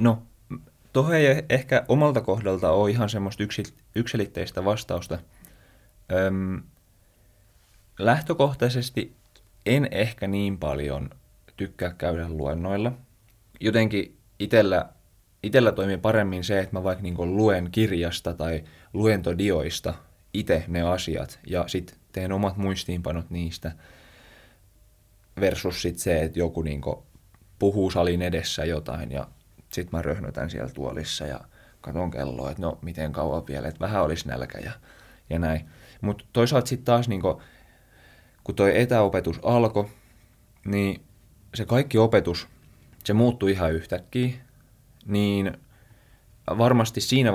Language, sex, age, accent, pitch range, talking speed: Finnish, male, 20-39, native, 85-115 Hz, 120 wpm